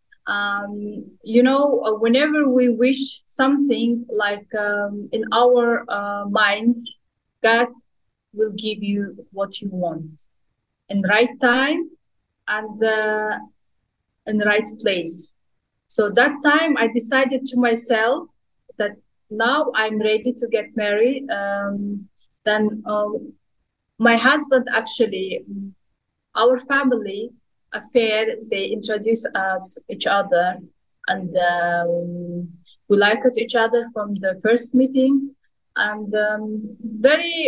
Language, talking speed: English, 115 wpm